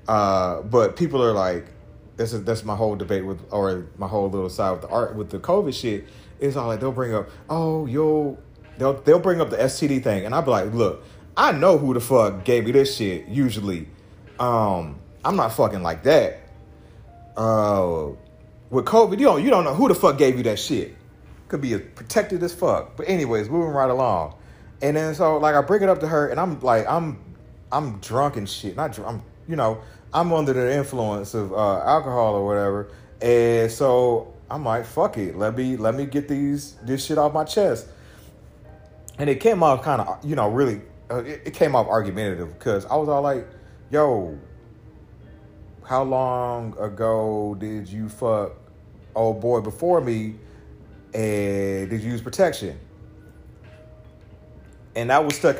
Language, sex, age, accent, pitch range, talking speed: English, male, 30-49, American, 105-140 Hz, 190 wpm